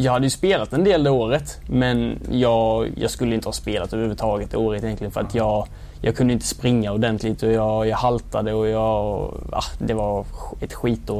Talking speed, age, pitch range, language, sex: 210 wpm, 20-39, 110-130 Hz, English, male